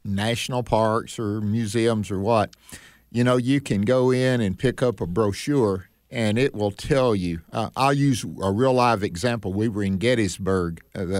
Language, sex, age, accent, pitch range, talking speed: English, male, 50-69, American, 100-130 Hz, 190 wpm